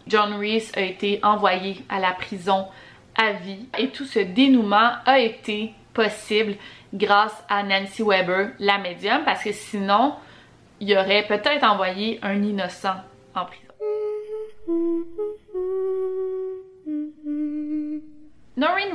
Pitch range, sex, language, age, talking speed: 200-245 Hz, female, French, 20-39, 115 wpm